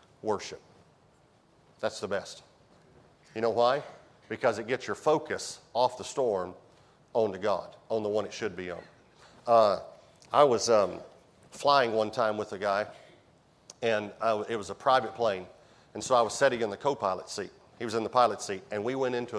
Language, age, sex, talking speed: English, 40-59, male, 185 wpm